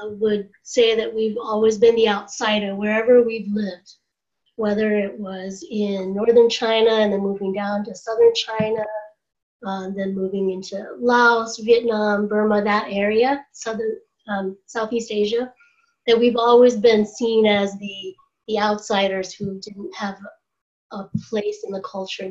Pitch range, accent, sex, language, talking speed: 200-235 Hz, American, female, English, 150 wpm